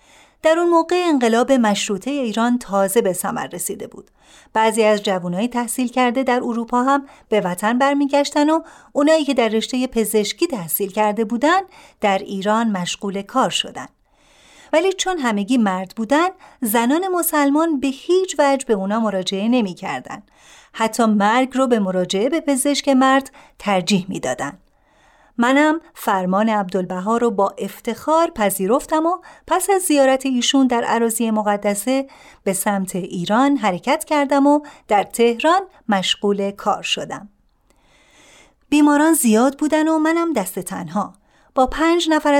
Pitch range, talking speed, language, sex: 210-290 Hz, 140 wpm, Persian, female